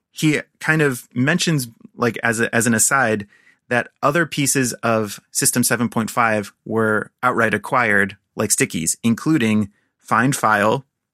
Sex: male